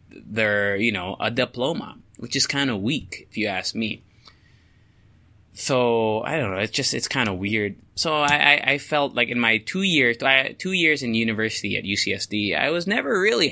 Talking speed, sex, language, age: 190 wpm, male, English, 20-39